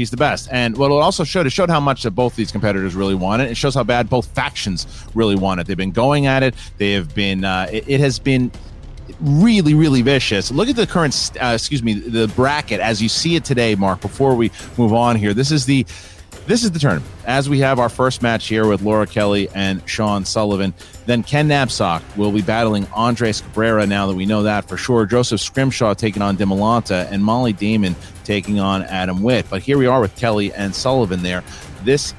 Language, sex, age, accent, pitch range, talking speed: English, male, 30-49, American, 105-140 Hz, 225 wpm